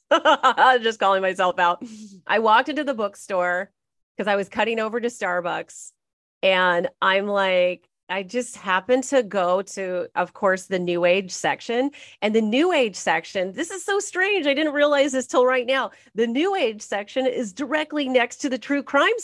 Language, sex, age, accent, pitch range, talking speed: English, female, 30-49, American, 180-245 Hz, 185 wpm